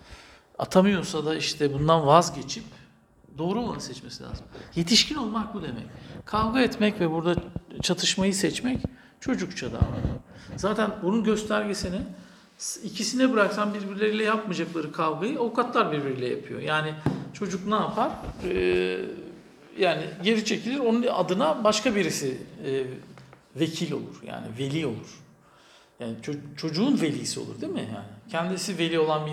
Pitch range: 150-205 Hz